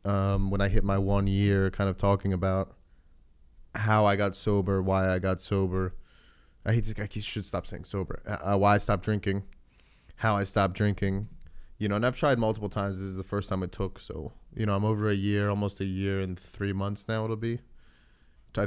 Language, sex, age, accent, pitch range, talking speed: English, male, 20-39, American, 95-110 Hz, 210 wpm